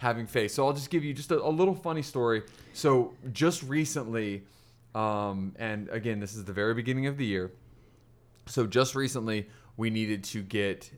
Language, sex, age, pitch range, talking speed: English, male, 20-39, 100-120 Hz, 185 wpm